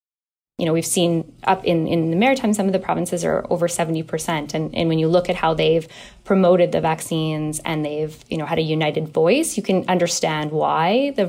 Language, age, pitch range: English, 10-29, 160-190 Hz